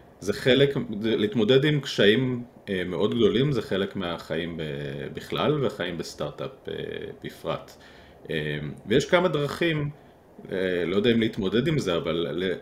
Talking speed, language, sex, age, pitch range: 115 wpm, Hebrew, male, 40-59, 85-135 Hz